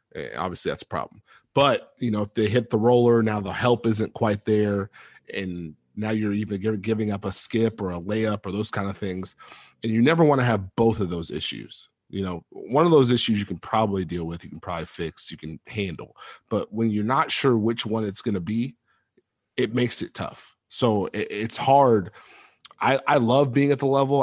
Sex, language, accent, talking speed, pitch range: male, English, American, 220 wpm, 95-115 Hz